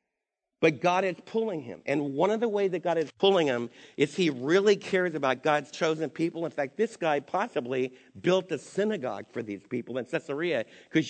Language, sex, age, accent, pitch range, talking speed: English, male, 50-69, American, 155-200 Hz, 200 wpm